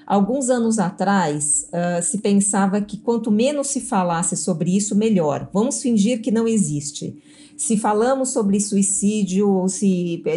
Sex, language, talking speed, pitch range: female, Portuguese, 145 wpm, 180-230 Hz